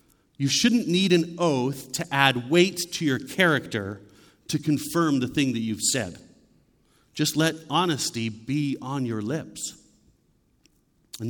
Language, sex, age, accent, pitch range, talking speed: English, male, 40-59, American, 125-165 Hz, 140 wpm